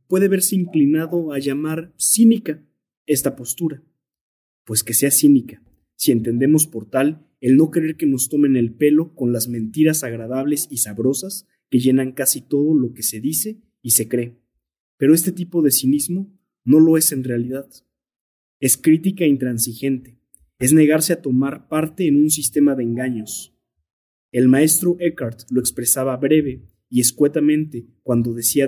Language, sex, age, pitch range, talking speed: Spanish, male, 30-49, 120-150 Hz, 155 wpm